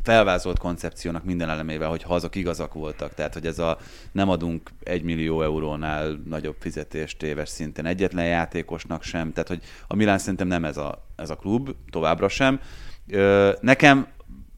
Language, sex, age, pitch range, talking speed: Hungarian, male, 30-49, 80-95 Hz, 160 wpm